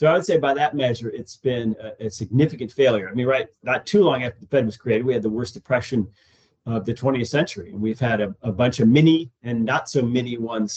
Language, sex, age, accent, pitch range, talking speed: English, male, 40-59, American, 110-140 Hz, 255 wpm